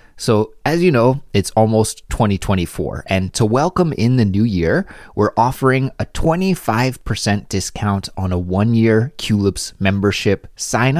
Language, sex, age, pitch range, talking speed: English, male, 30-49, 95-130 Hz, 140 wpm